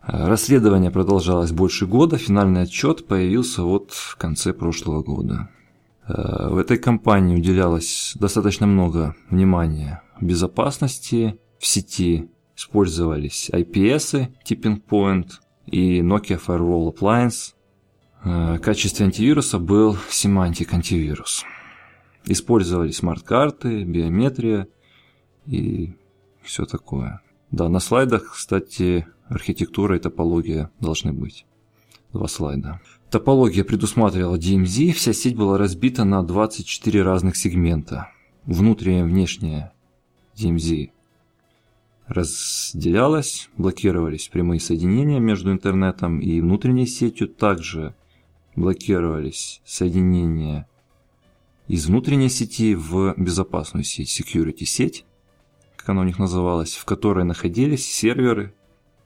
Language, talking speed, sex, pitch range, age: Russian, 100 wpm, male, 85-110 Hz, 20-39